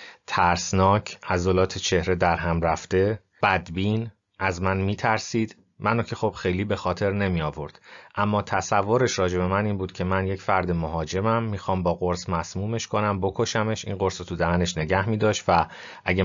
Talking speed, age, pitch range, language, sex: 175 wpm, 30-49, 90-105 Hz, Persian, male